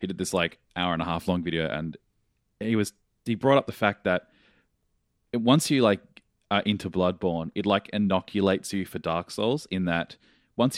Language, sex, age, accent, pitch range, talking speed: English, male, 20-39, Australian, 90-105 Hz, 195 wpm